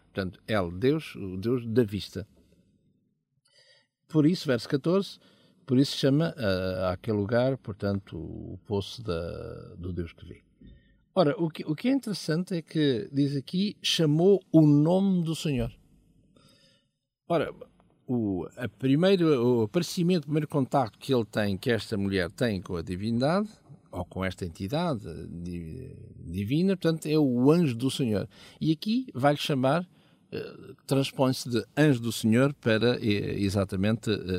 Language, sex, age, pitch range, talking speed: Portuguese, male, 50-69, 100-150 Hz, 145 wpm